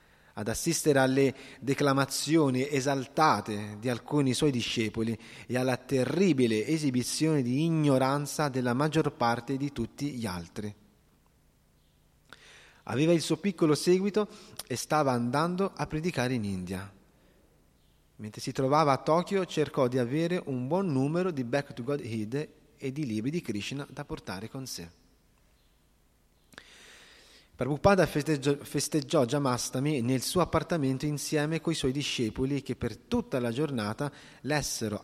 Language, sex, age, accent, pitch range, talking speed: Italian, male, 30-49, native, 120-155 Hz, 130 wpm